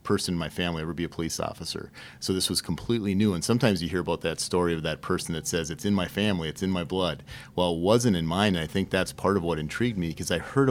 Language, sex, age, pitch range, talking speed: English, male, 30-49, 80-90 Hz, 285 wpm